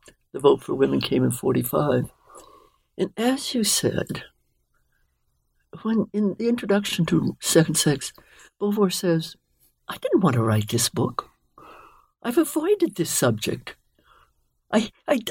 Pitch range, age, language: 135-225 Hz, 60-79, English